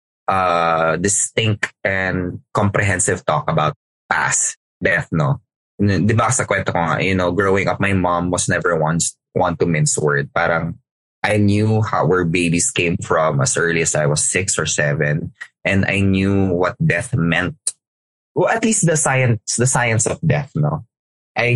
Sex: male